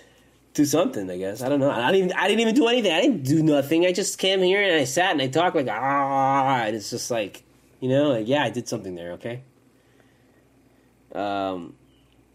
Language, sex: English, male